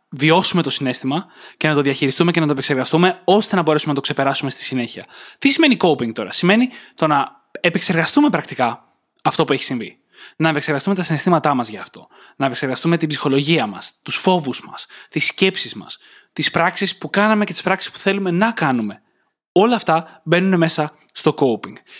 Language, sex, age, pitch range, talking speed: Greek, male, 20-39, 140-175 Hz, 185 wpm